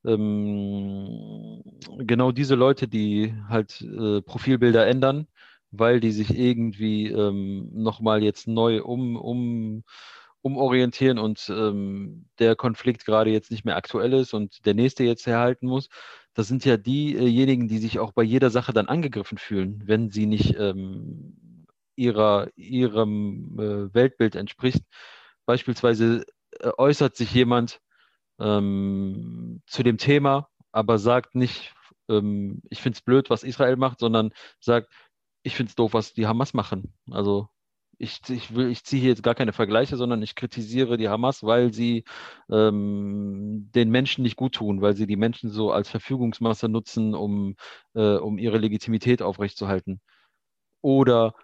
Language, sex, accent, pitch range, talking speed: German, male, German, 105-125 Hz, 140 wpm